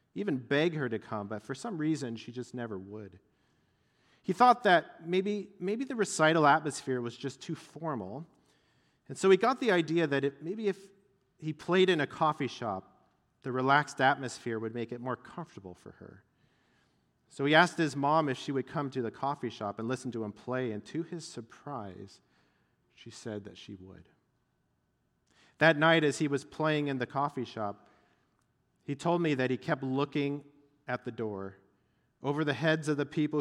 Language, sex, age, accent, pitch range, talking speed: English, male, 40-59, American, 115-155 Hz, 185 wpm